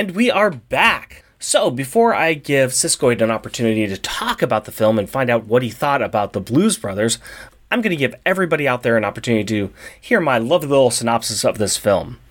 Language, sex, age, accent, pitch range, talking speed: English, male, 30-49, American, 115-180 Hz, 215 wpm